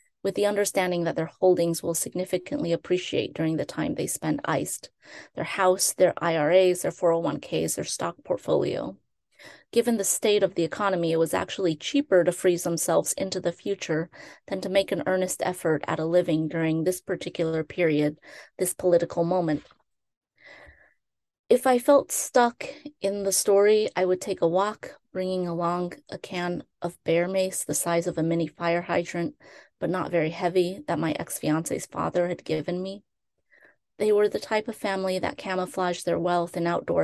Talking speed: 170 wpm